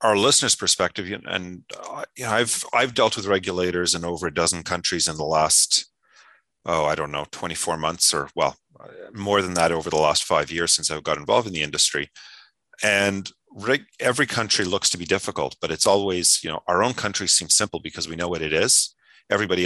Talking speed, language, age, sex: 210 wpm, English, 40-59, male